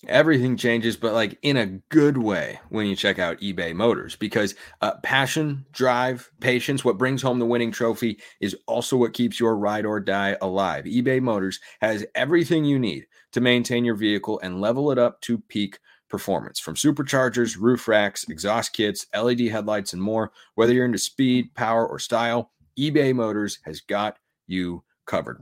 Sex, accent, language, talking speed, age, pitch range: male, American, English, 175 wpm, 30-49, 105-130 Hz